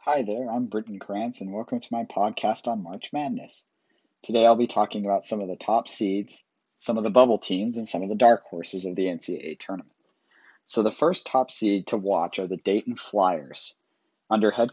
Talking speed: 210 wpm